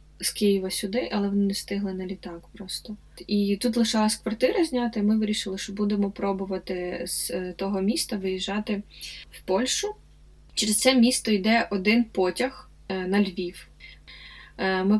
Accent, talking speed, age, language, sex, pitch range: native, 145 wpm, 20-39, Ukrainian, female, 190-225 Hz